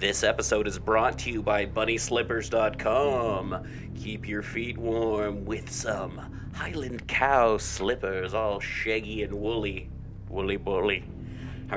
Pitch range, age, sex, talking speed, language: 100-120 Hz, 30-49, male, 120 wpm, English